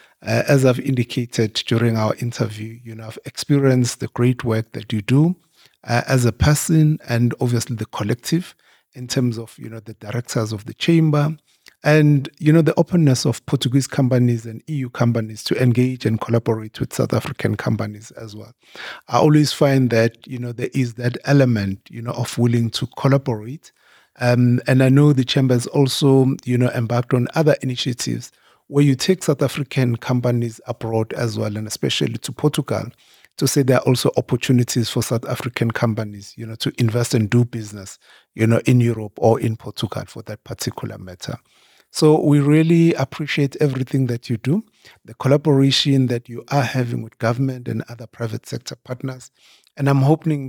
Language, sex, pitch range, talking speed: English, male, 115-140 Hz, 180 wpm